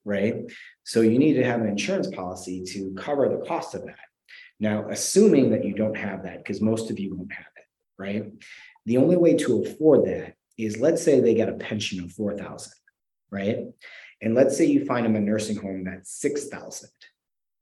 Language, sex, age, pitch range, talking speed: English, male, 30-49, 100-120 Hz, 200 wpm